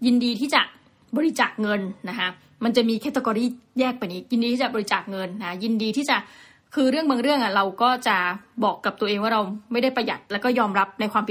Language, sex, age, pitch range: Thai, female, 20-39, 210-255 Hz